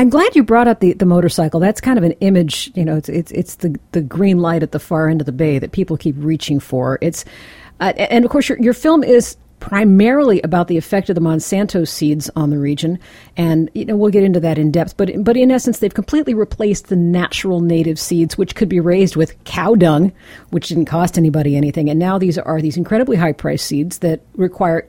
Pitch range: 160-215 Hz